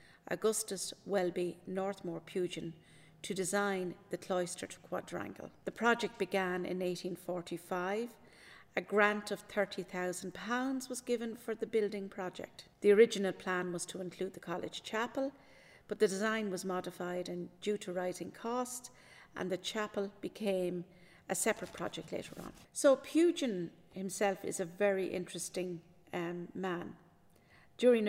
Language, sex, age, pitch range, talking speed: English, female, 50-69, 175-210 Hz, 130 wpm